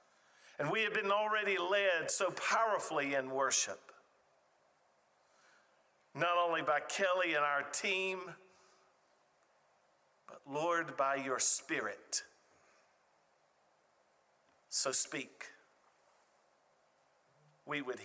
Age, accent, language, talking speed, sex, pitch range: 50-69, American, English, 85 wpm, male, 190-275 Hz